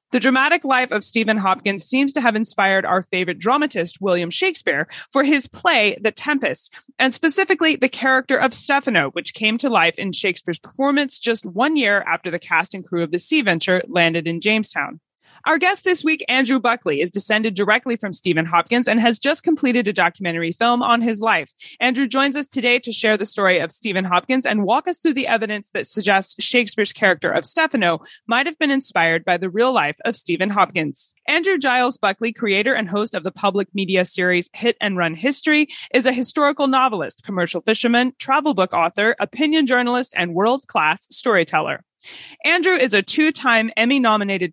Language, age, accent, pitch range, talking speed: English, 20-39, American, 190-265 Hz, 185 wpm